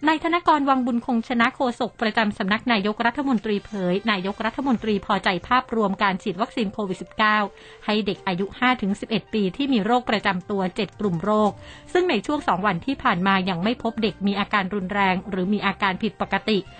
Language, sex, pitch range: Thai, female, 195-235 Hz